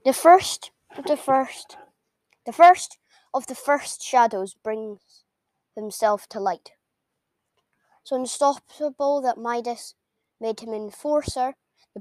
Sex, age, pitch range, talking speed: female, 10-29, 215-265 Hz, 115 wpm